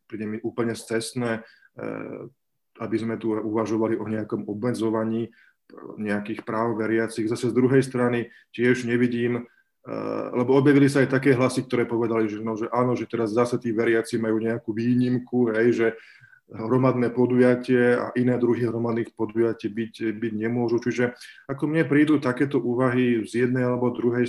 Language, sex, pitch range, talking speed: Slovak, male, 110-120 Hz, 155 wpm